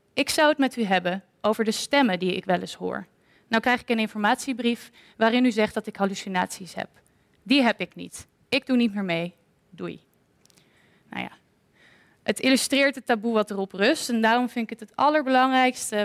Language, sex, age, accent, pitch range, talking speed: Dutch, female, 20-39, Dutch, 195-250 Hz, 195 wpm